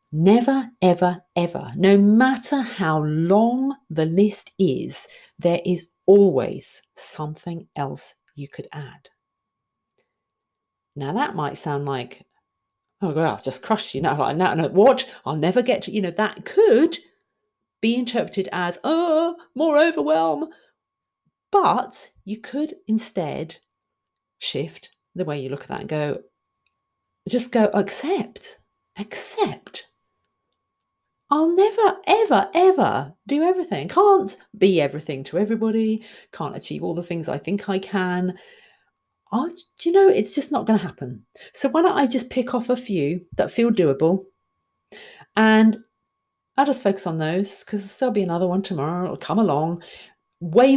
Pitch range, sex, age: 175-265 Hz, female, 40-59